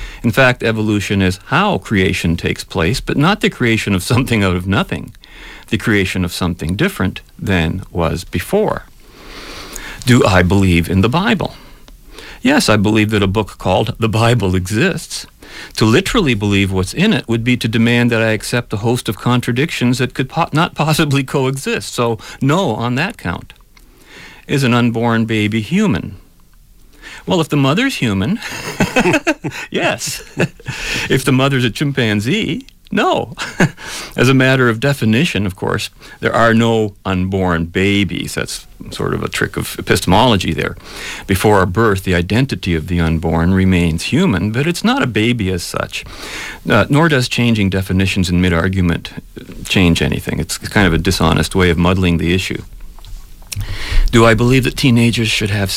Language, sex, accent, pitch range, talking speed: English, male, American, 95-125 Hz, 160 wpm